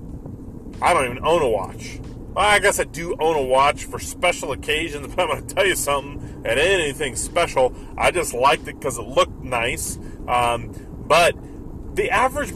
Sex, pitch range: male, 175-260 Hz